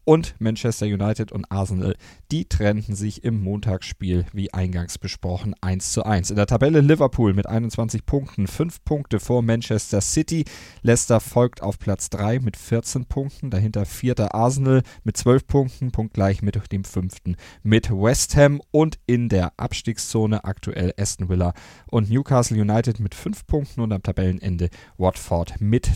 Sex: male